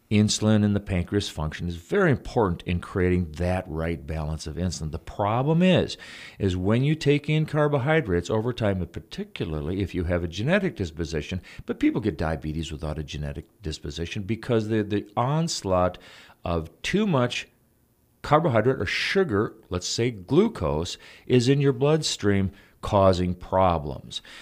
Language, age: English, 40-59